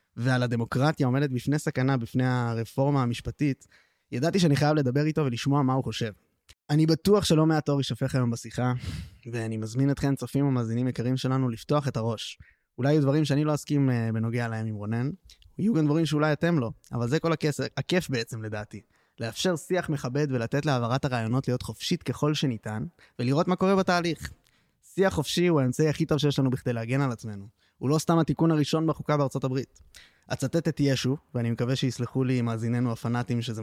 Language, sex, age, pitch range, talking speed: Hebrew, male, 20-39, 120-150 Hz, 150 wpm